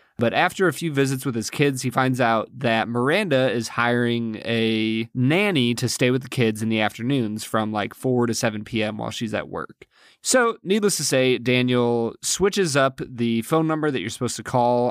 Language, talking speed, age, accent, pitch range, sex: English, 200 wpm, 20-39, American, 115-150 Hz, male